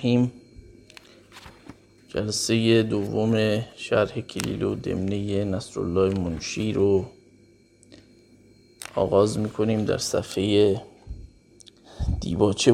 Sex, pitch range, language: male, 105-120 Hz, Persian